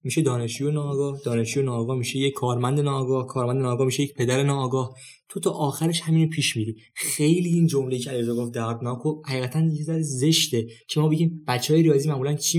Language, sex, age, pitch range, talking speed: Persian, male, 20-39, 140-195 Hz, 180 wpm